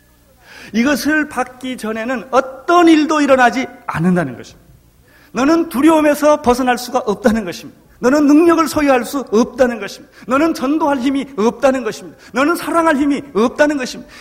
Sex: male